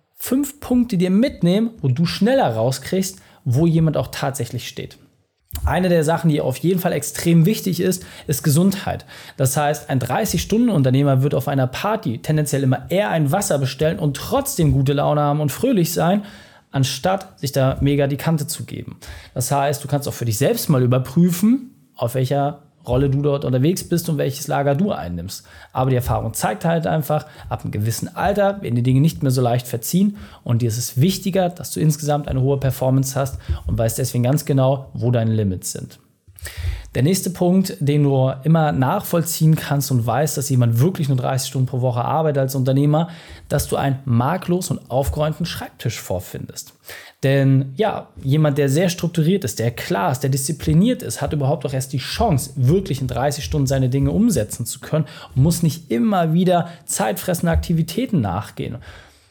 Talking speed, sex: 185 wpm, male